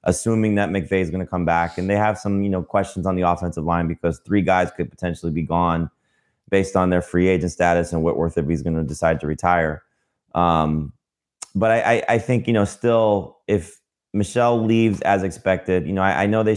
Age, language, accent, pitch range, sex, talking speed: 20-39, English, American, 85-100 Hz, male, 220 wpm